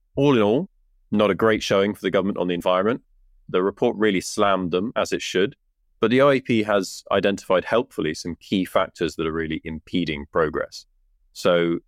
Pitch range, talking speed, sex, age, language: 90-110 Hz, 180 wpm, male, 20-39, English